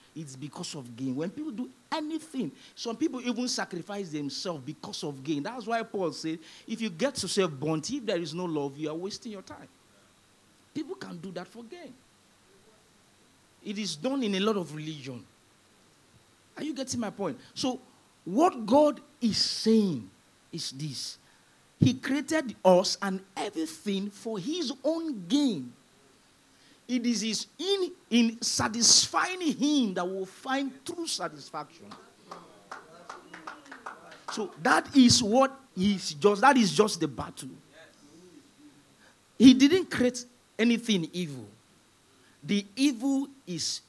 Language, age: English, 50-69